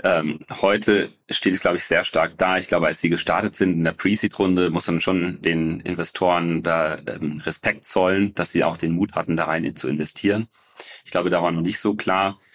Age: 30-49